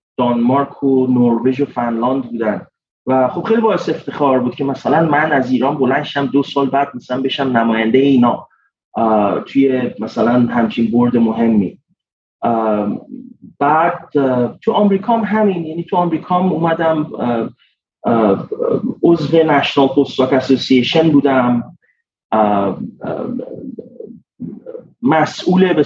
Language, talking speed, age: Persian, 100 wpm, 30-49